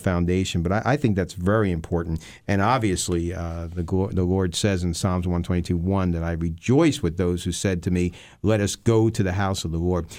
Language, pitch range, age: English, 90-130 Hz, 50-69